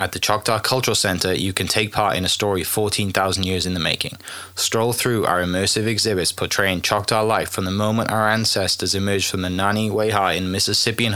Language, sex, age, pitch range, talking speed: English, male, 20-39, 95-115 Hz, 195 wpm